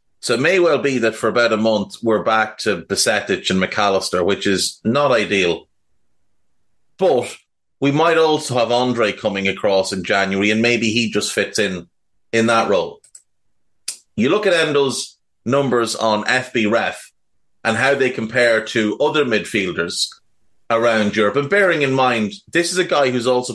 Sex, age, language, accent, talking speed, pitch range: male, 30-49, English, Irish, 170 wpm, 110-160 Hz